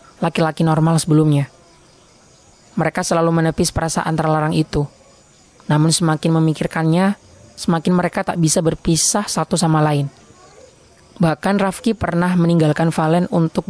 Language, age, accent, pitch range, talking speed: Indonesian, 20-39, native, 155-180 Hz, 115 wpm